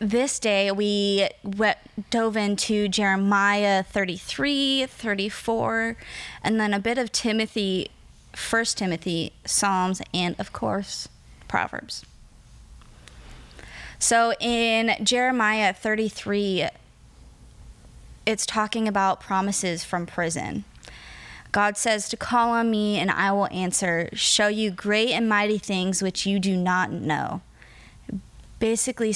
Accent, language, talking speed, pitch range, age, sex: American, English, 110 wpm, 185-220 Hz, 20-39, female